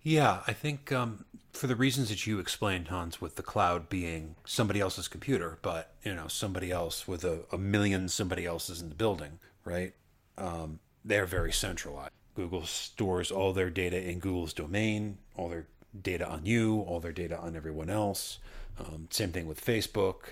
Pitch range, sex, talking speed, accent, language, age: 85-105 Hz, male, 180 wpm, American, English, 40-59